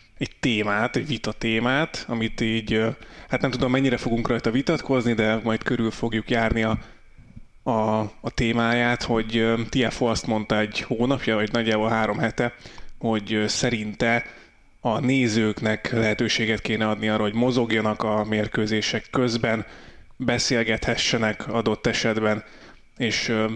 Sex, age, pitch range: male, 20-39, 110-120 Hz